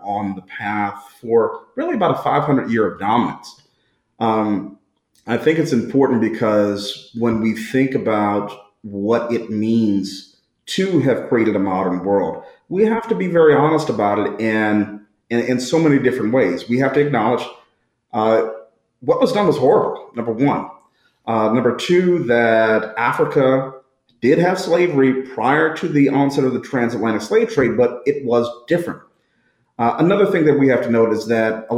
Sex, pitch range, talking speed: male, 110-140 Hz, 170 wpm